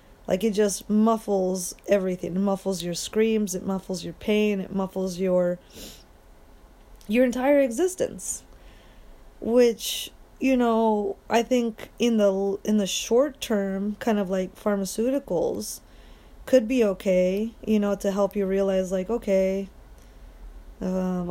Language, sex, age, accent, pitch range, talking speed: English, female, 20-39, American, 185-220 Hz, 130 wpm